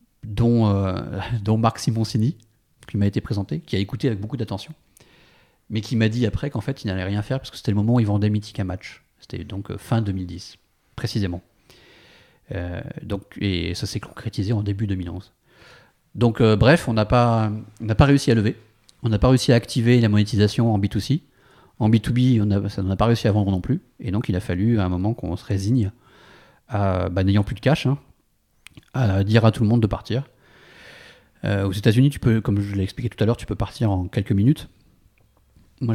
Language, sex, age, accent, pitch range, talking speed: French, male, 40-59, French, 100-120 Hz, 205 wpm